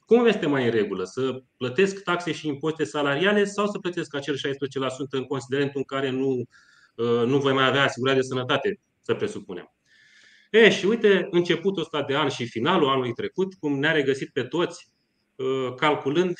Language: Romanian